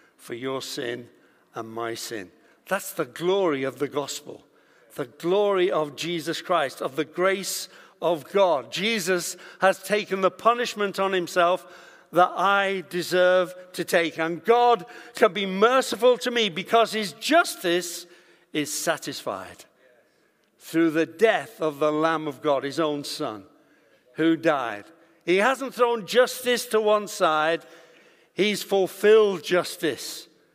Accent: British